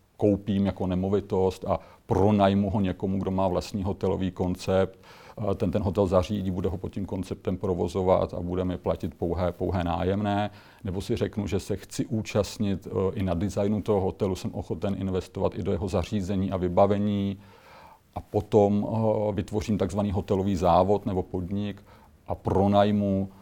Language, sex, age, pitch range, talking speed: Czech, male, 50-69, 95-105 Hz, 150 wpm